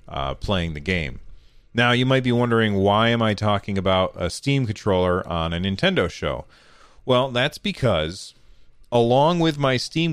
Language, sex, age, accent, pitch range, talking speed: English, male, 40-59, American, 90-115 Hz, 165 wpm